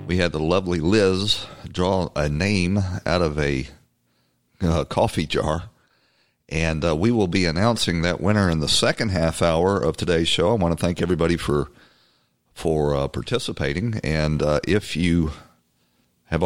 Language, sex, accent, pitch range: English, male, American, 75-105 Hz